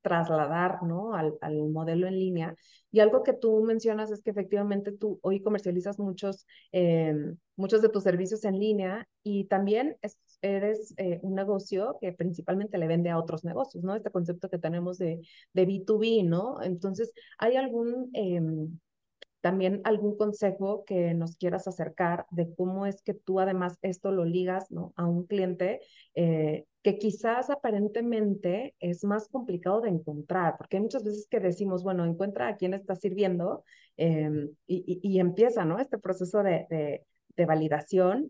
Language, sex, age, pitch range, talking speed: Spanish, female, 30-49, 170-210 Hz, 165 wpm